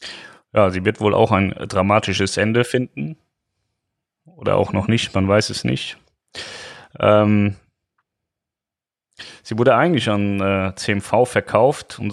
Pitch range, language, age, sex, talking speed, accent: 95-115 Hz, German, 30-49, male, 130 wpm, German